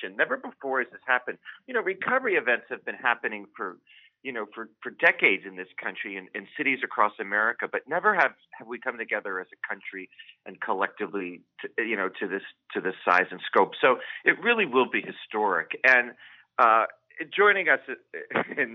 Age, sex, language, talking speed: 40-59, male, English, 190 wpm